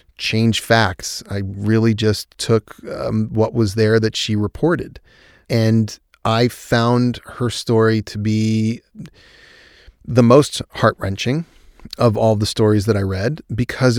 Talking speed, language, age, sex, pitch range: 135 wpm, English, 30-49, male, 105-115 Hz